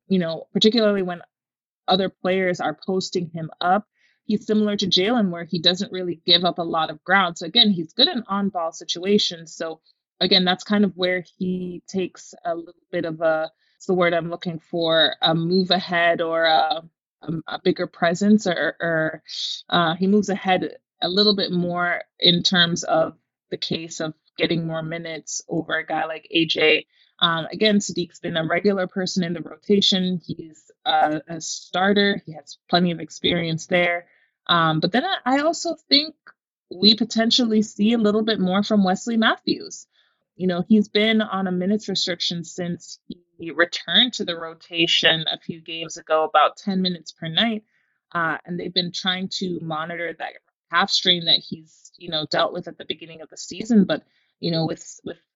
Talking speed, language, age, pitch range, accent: 180 wpm, English, 20-39, 165-200 Hz, American